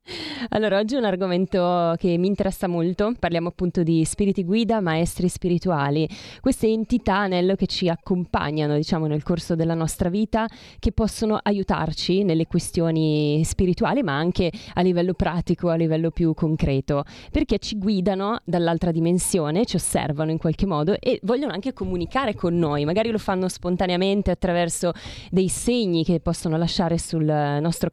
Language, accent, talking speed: Italian, native, 155 wpm